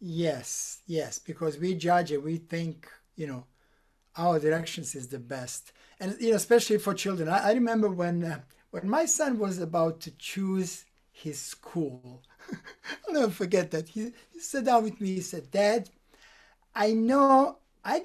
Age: 60-79